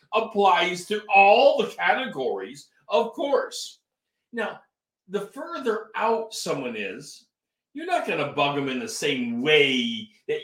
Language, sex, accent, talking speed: English, male, American, 140 wpm